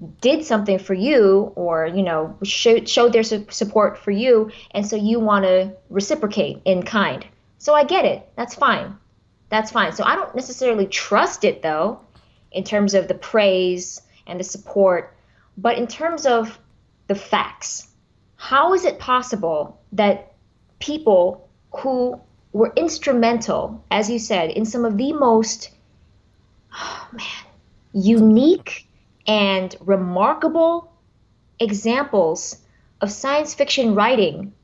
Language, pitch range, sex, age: English, 195-260 Hz, female, 20-39